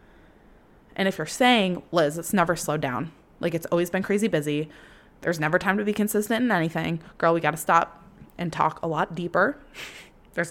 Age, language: 20-39, English